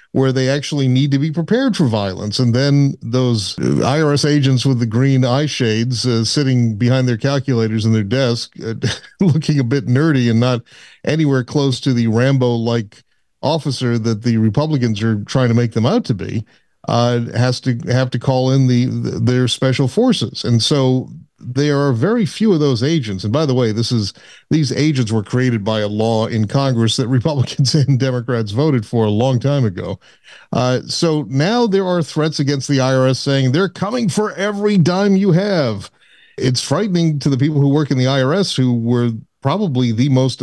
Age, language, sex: 50-69, English, male